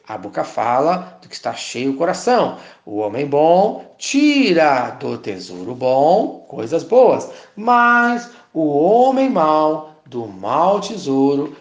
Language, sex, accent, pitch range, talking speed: Portuguese, male, Brazilian, 140-220 Hz, 130 wpm